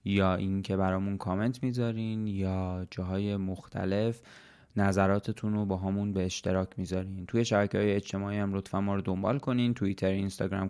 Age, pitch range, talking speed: 20-39, 95-110 Hz, 155 wpm